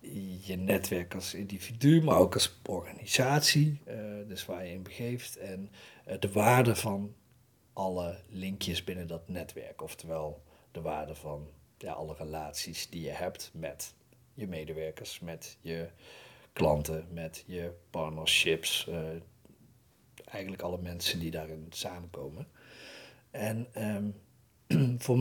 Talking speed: 120 wpm